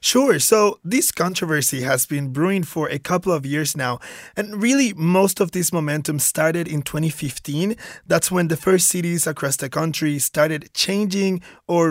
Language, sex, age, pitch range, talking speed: English, male, 20-39, 150-200 Hz, 165 wpm